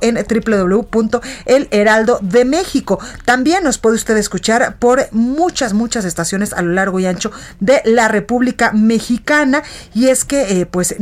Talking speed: 145 wpm